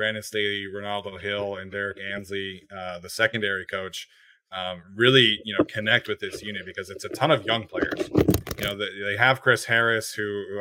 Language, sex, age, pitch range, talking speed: English, male, 20-39, 100-115 Hz, 200 wpm